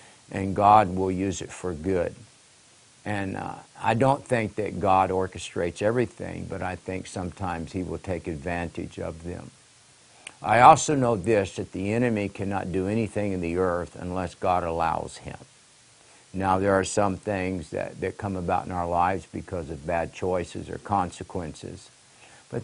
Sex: male